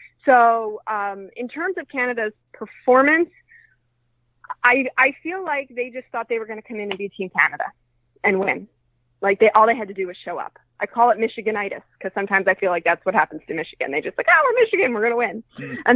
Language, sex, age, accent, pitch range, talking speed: English, female, 20-39, American, 195-245 Hz, 230 wpm